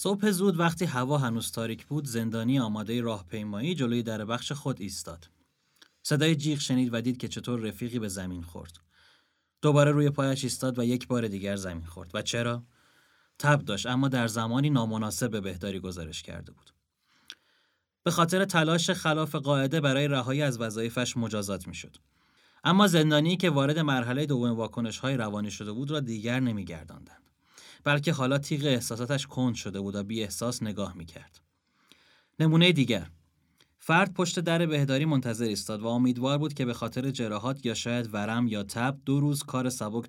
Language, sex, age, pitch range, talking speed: Persian, male, 30-49, 105-140 Hz, 160 wpm